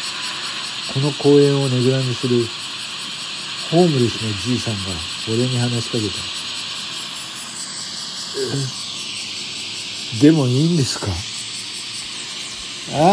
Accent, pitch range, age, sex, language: native, 110-160 Hz, 60-79, male, Japanese